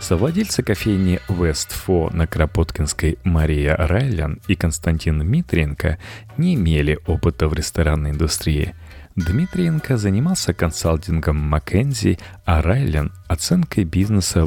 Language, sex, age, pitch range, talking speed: Russian, male, 30-49, 80-100 Hz, 100 wpm